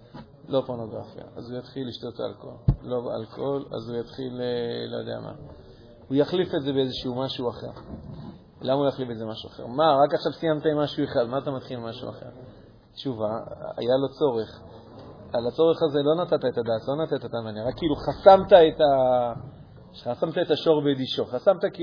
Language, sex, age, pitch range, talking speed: Hebrew, male, 40-59, 120-150 Hz, 135 wpm